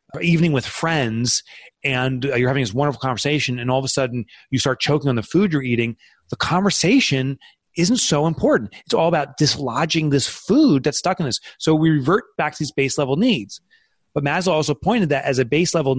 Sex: male